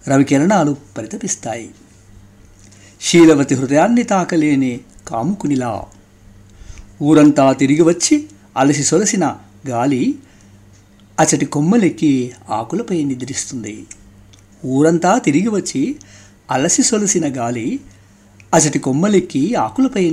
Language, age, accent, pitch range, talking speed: Telugu, 60-79, native, 100-160 Hz, 75 wpm